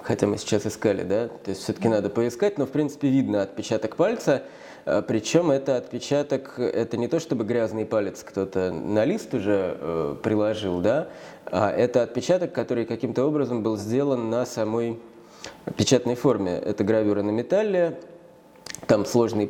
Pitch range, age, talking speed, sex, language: 105-135 Hz, 20-39, 150 wpm, male, Russian